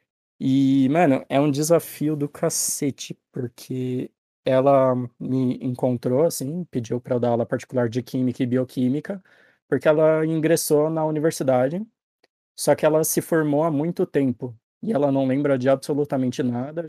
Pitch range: 130-155 Hz